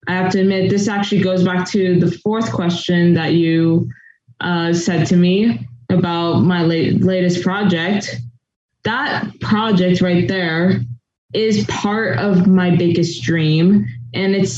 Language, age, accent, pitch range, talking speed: English, 20-39, American, 170-195 Hz, 145 wpm